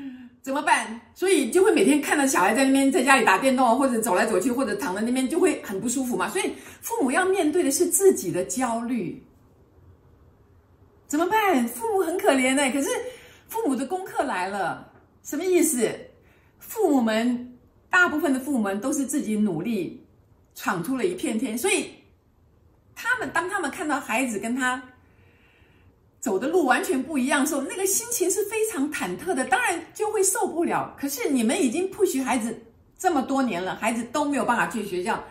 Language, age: Chinese, 50-69